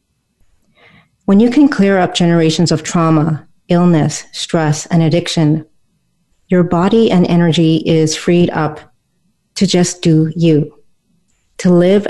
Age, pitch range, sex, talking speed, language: 40-59, 155-180 Hz, female, 125 wpm, English